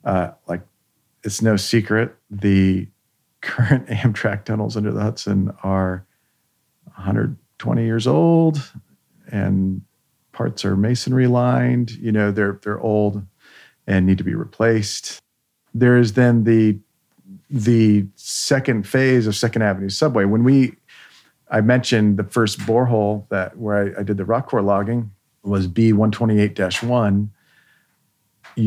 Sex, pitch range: male, 100-115 Hz